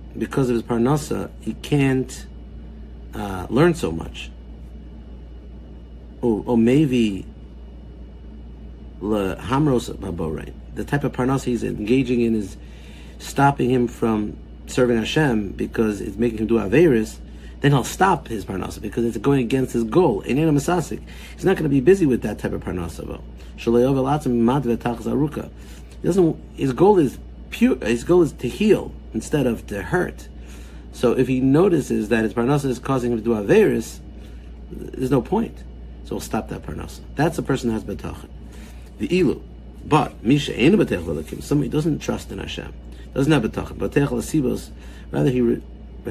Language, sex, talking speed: English, male, 155 wpm